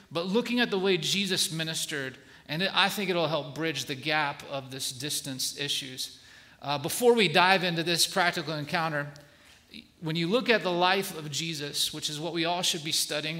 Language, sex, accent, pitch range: English, male, American, 160-205 Hz